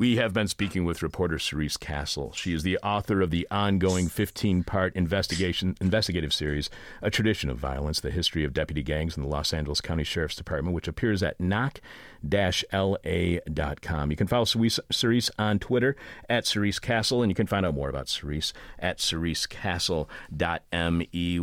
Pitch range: 80-105 Hz